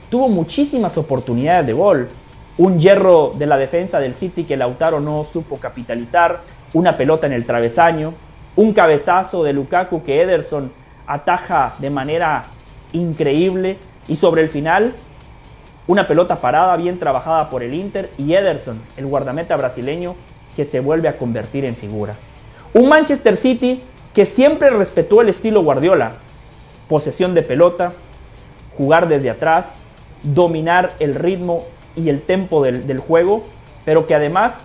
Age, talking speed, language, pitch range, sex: 30-49, 145 wpm, Spanish, 140-190 Hz, male